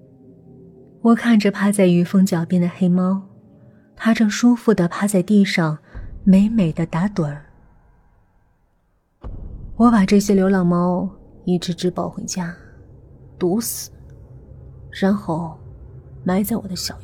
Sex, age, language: female, 20-39, Chinese